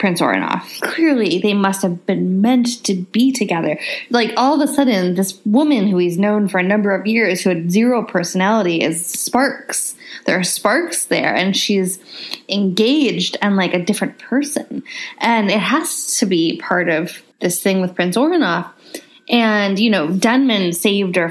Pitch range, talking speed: 190-260 Hz, 175 wpm